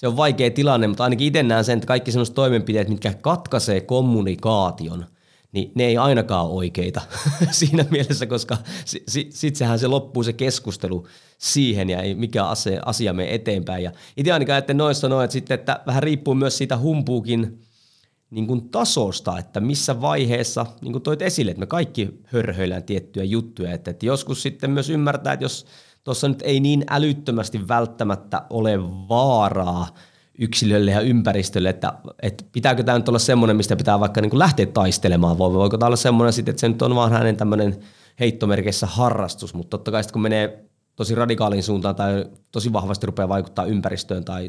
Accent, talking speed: native, 175 wpm